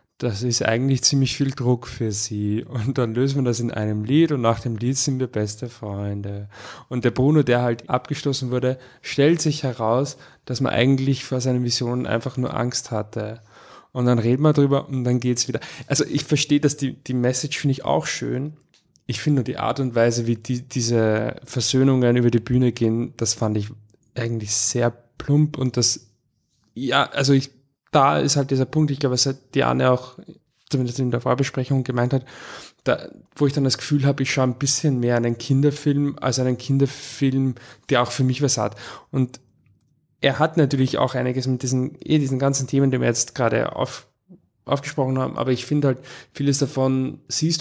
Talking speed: 200 wpm